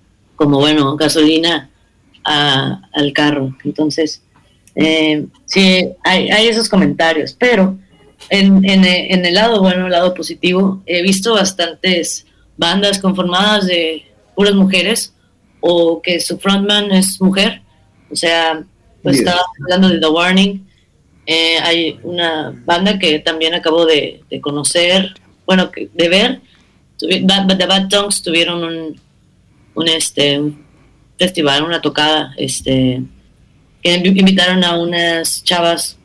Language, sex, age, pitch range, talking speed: Spanish, female, 30-49, 155-185 Hz, 130 wpm